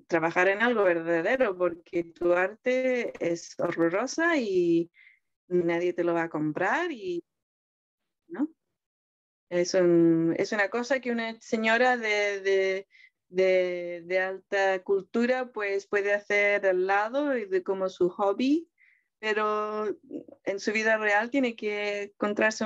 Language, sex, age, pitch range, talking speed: Spanish, female, 20-39, 185-230 Hz, 130 wpm